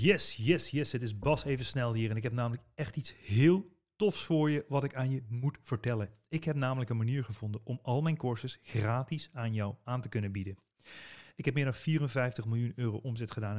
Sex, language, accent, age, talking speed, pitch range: male, Dutch, Dutch, 40-59, 225 wpm, 110-140 Hz